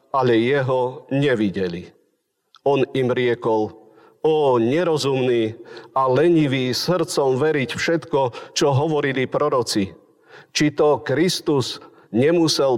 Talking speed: 95 wpm